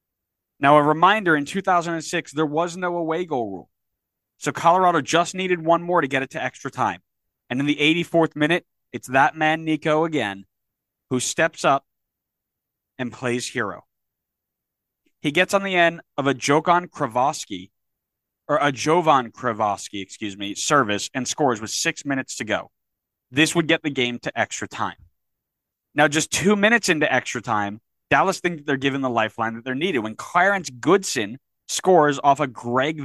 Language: English